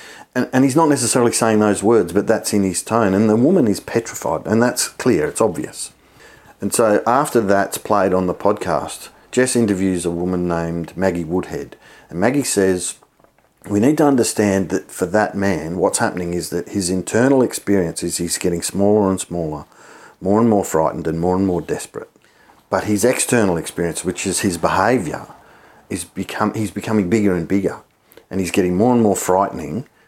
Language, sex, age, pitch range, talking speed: English, male, 50-69, 95-115 Hz, 185 wpm